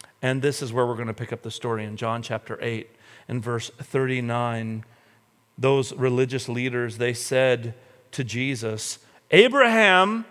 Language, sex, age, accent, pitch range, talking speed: English, male, 40-59, American, 120-190 Hz, 150 wpm